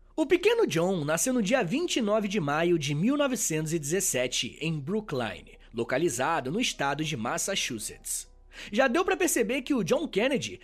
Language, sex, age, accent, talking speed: Portuguese, male, 20-39, Brazilian, 145 wpm